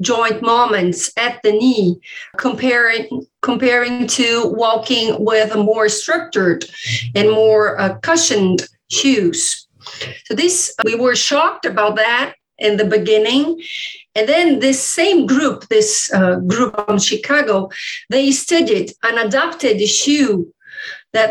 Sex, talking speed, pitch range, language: female, 125 wpm, 220-320 Hz, English